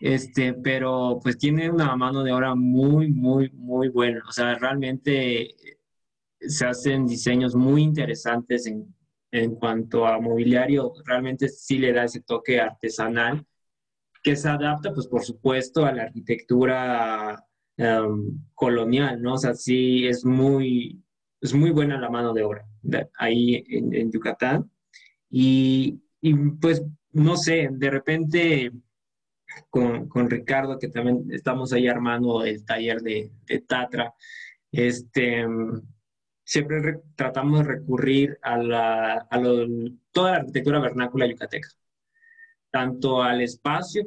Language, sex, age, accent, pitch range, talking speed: Spanish, male, 20-39, Mexican, 115-135 Hz, 135 wpm